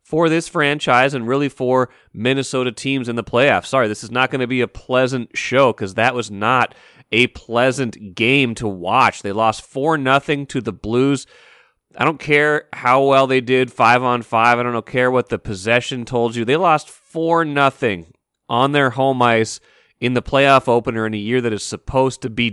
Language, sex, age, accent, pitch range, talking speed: English, male, 30-49, American, 110-135 Hz, 200 wpm